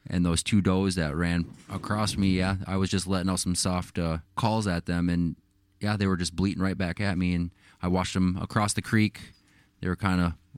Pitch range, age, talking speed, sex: 90-100 Hz, 20-39, 235 wpm, male